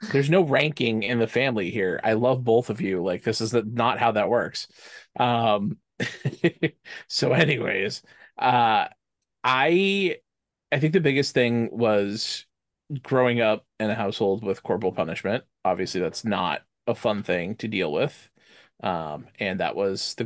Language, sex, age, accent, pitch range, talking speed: English, male, 30-49, American, 105-130 Hz, 155 wpm